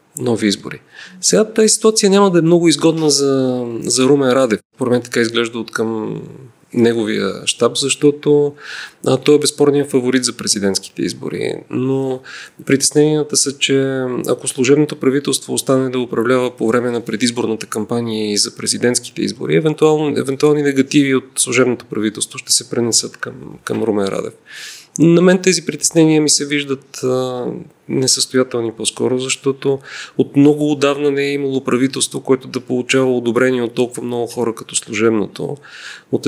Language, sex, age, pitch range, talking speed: Bulgarian, male, 30-49, 125-150 Hz, 150 wpm